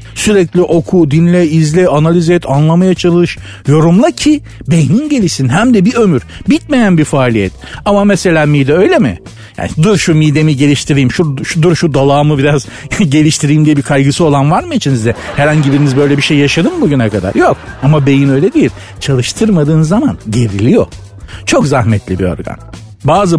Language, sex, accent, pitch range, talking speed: Turkish, male, native, 120-180 Hz, 165 wpm